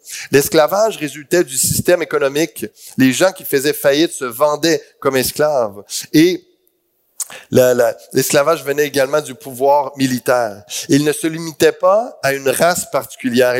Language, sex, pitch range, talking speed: French, male, 140-180 Hz, 130 wpm